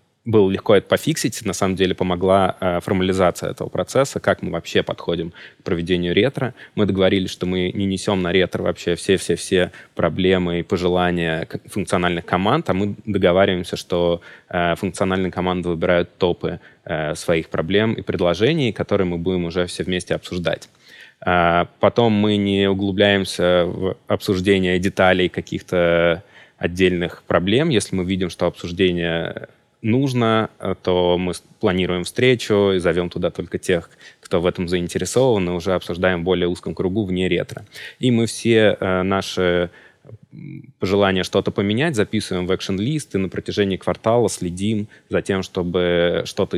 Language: Russian